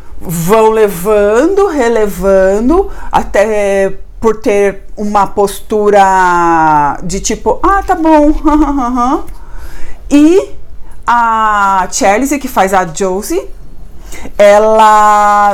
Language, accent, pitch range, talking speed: Portuguese, Brazilian, 200-275 Hz, 80 wpm